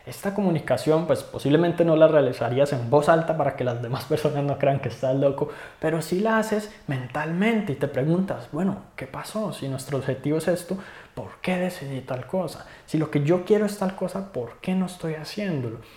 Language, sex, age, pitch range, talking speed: Spanish, male, 20-39, 130-175 Hz, 205 wpm